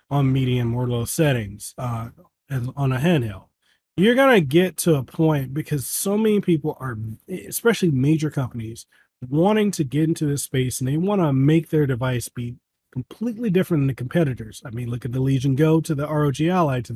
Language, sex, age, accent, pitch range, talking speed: English, male, 30-49, American, 125-170 Hz, 190 wpm